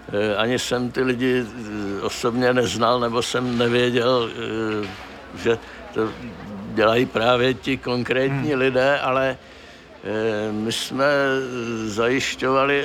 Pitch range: 110-130 Hz